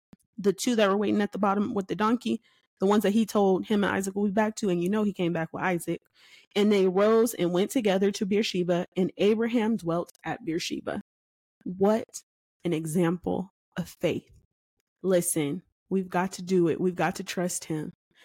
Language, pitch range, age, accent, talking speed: English, 180-215 Hz, 20-39, American, 195 wpm